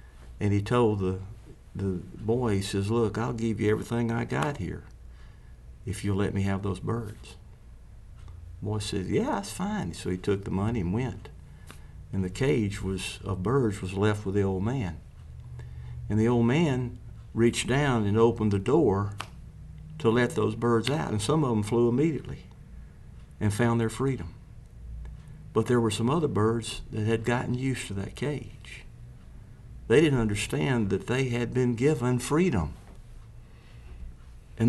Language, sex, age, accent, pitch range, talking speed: English, male, 50-69, American, 95-125 Hz, 165 wpm